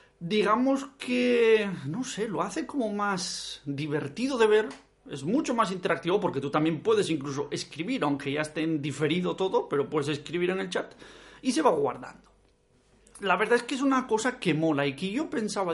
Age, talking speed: 40-59, 190 wpm